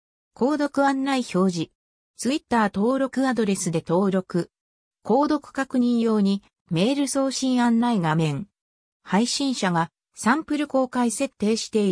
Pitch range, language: 180-260 Hz, Japanese